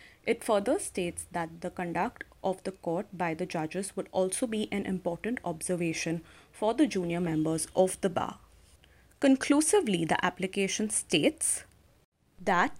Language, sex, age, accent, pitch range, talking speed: English, female, 30-49, Indian, 175-215 Hz, 140 wpm